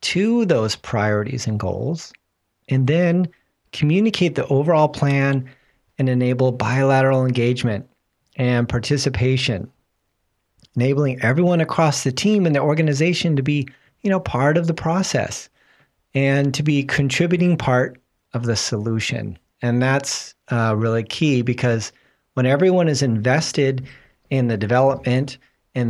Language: English